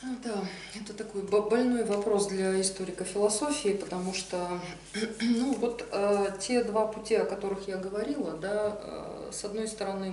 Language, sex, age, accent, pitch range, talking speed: Russian, female, 20-39, native, 160-205 Hz, 150 wpm